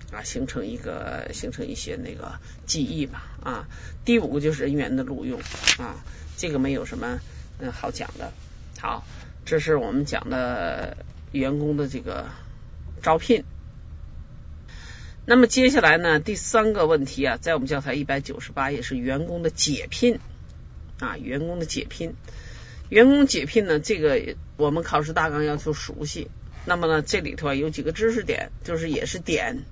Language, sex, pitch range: Chinese, male, 145-215 Hz